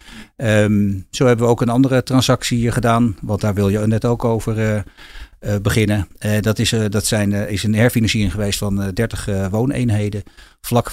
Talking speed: 200 wpm